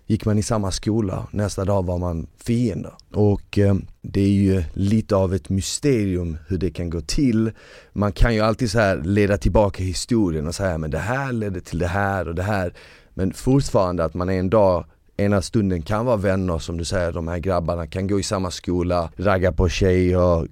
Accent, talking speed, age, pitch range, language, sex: native, 210 wpm, 30-49, 90-110 Hz, Swedish, male